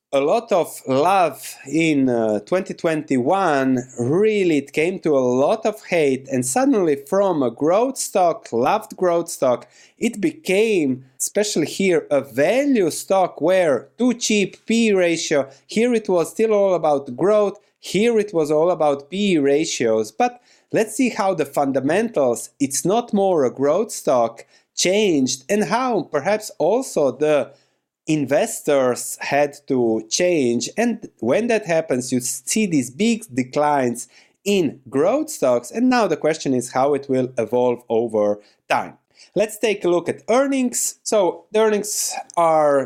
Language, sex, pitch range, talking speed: English, male, 135-210 Hz, 145 wpm